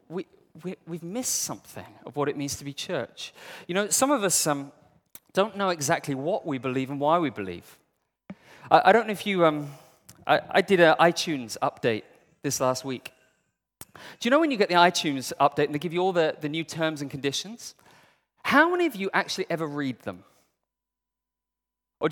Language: English